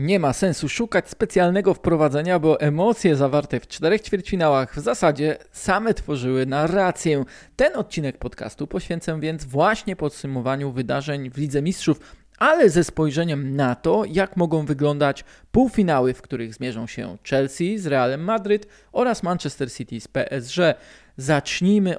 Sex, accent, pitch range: male, native, 140-195 Hz